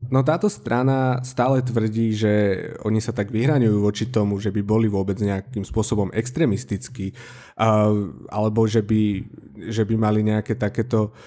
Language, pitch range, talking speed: Slovak, 110-125 Hz, 145 wpm